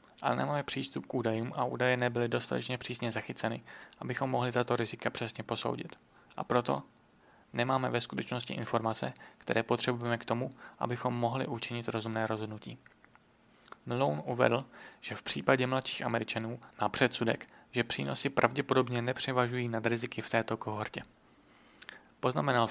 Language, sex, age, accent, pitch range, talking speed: Czech, male, 30-49, native, 115-125 Hz, 135 wpm